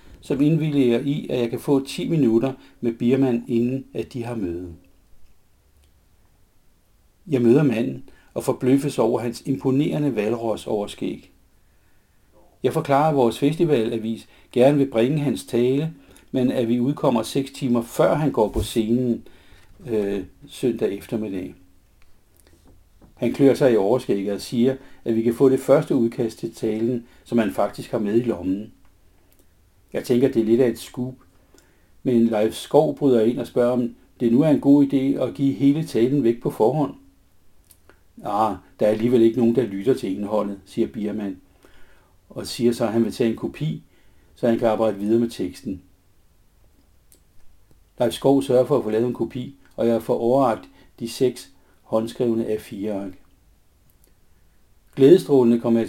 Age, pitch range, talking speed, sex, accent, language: 60-79, 95-125 Hz, 160 wpm, male, native, Danish